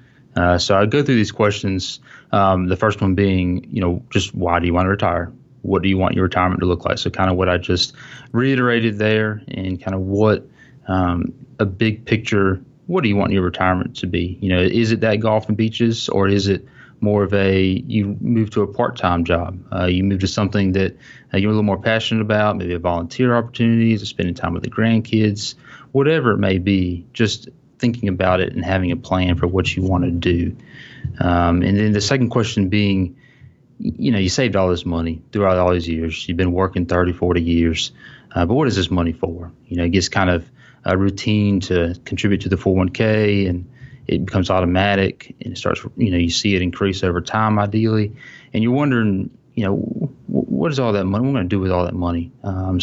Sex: male